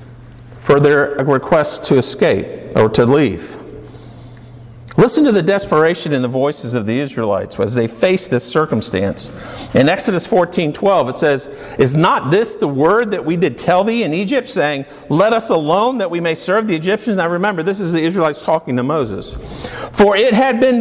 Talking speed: 185 wpm